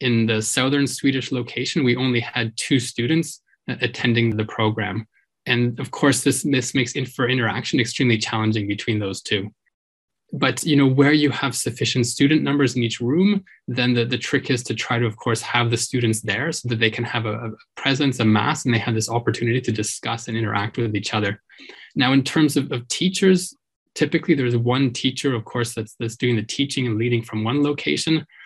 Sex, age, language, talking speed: male, 20-39, Swedish, 205 wpm